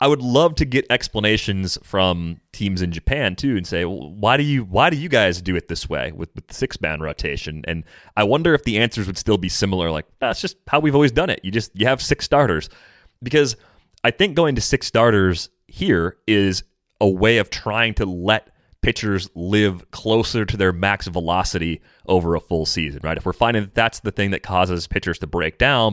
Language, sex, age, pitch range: English, male, 30-49, 85-110 Hz